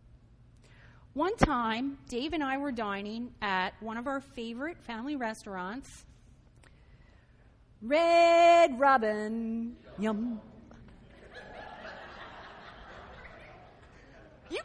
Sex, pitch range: female, 230-335 Hz